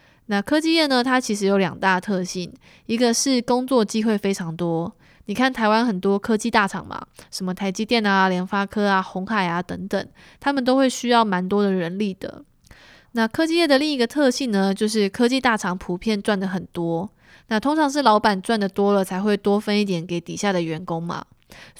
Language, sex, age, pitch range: Chinese, female, 20-39, 185-235 Hz